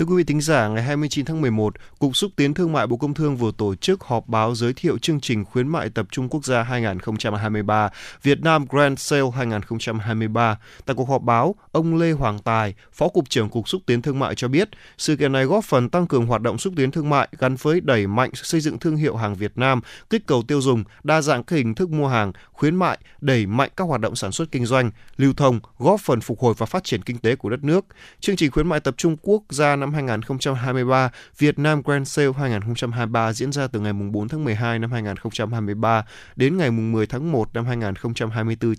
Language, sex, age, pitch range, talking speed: Vietnamese, male, 20-39, 115-150 Hz, 225 wpm